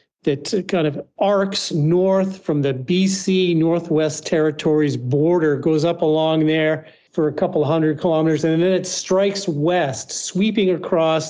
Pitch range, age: 145-165 Hz, 50-69